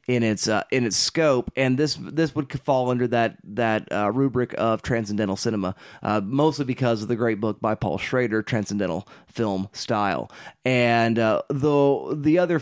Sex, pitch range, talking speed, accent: male, 110-130 Hz, 175 wpm, American